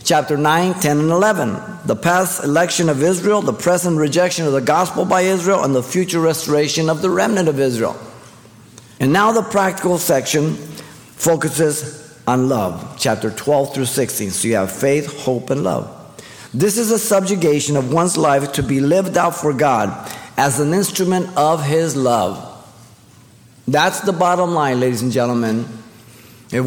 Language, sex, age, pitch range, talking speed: English, male, 50-69, 130-180 Hz, 165 wpm